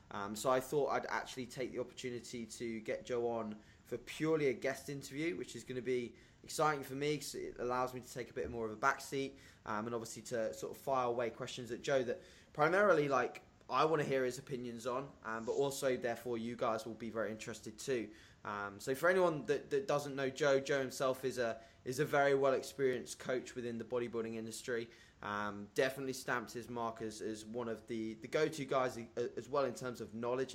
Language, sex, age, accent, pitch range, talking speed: English, male, 20-39, British, 110-135 Hz, 220 wpm